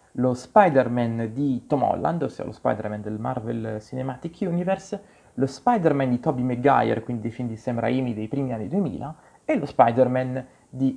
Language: Italian